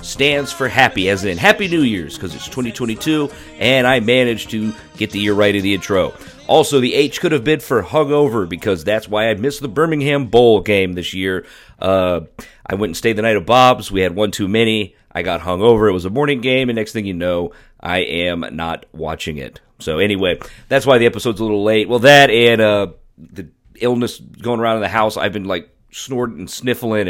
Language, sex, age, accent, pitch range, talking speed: English, male, 40-59, American, 95-125 Hz, 220 wpm